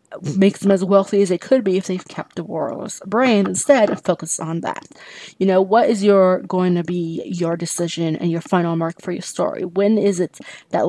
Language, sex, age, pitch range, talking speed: English, female, 30-49, 180-220 Hz, 220 wpm